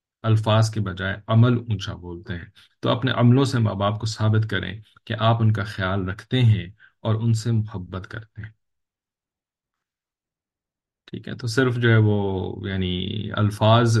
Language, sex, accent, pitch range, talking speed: English, male, Indian, 95-110 Hz, 160 wpm